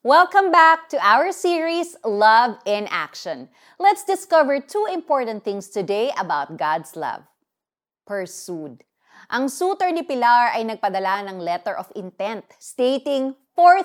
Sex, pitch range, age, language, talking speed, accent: female, 200-285 Hz, 30-49, Filipino, 130 wpm, native